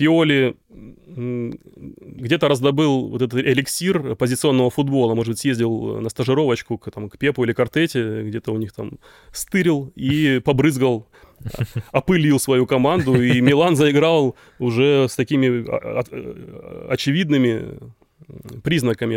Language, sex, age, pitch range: Russian, male, 20-39, 120-140 Hz